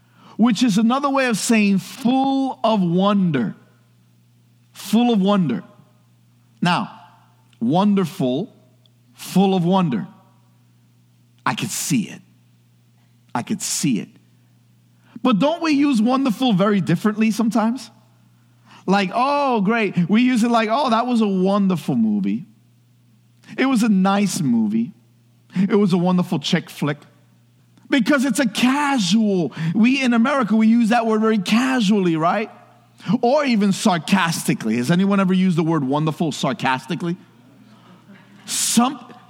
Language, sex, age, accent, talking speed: English, male, 50-69, American, 125 wpm